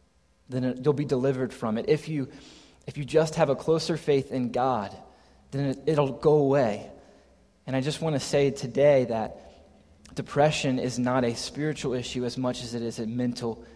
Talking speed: 185 wpm